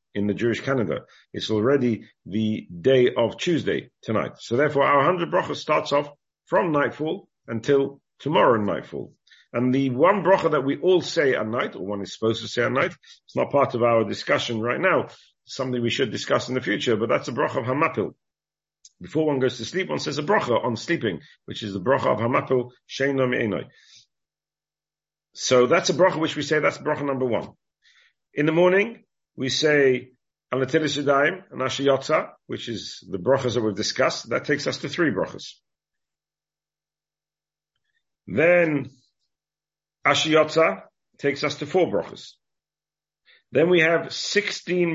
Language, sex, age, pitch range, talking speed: English, male, 50-69, 125-155 Hz, 160 wpm